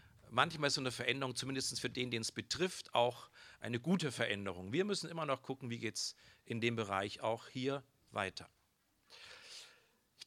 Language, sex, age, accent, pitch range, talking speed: German, male, 50-69, German, 125-165 Hz, 175 wpm